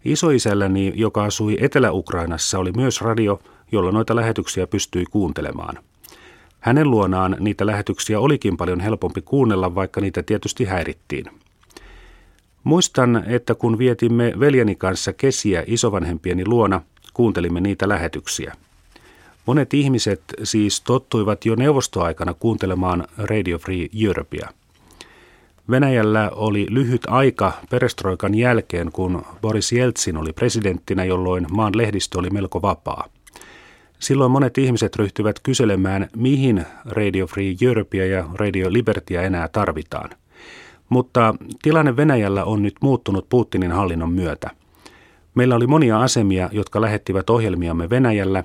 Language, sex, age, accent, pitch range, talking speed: Finnish, male, 40-59, native, 95-120 Hz, 115 wpm